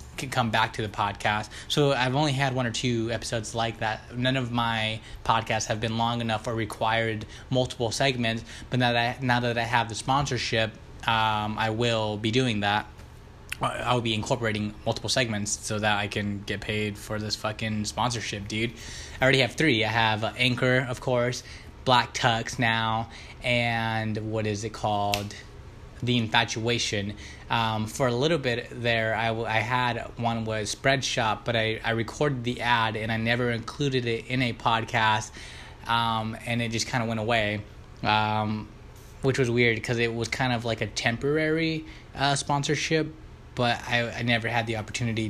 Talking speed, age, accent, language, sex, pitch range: 180 wpm, 20-39, American, English, male, 110-125 Hz